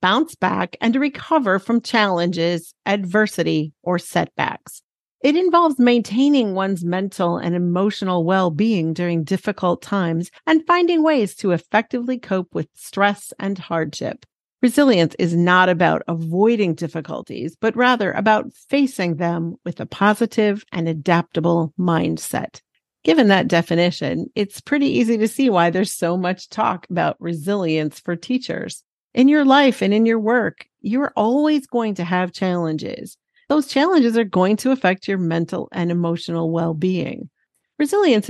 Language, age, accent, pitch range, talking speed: English, 40-59, American, 170-240 Hz, 140 wpm